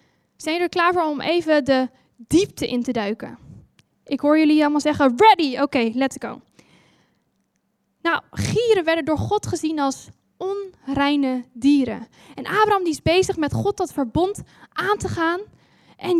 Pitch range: 265-345 Hz